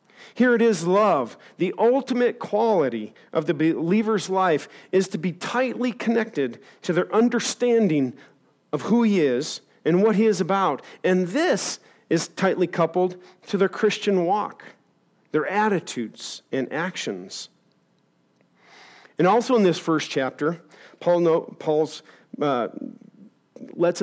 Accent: American